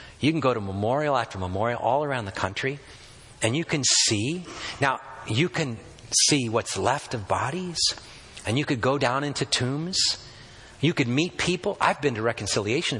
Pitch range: 110-155 Hz